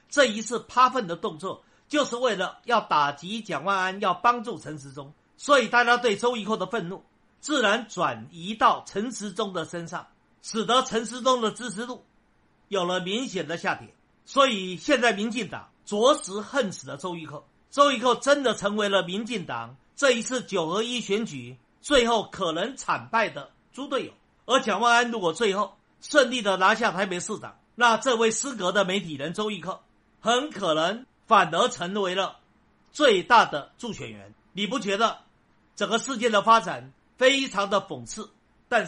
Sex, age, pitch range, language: male, 50-69, 175-240 Hz, Chinese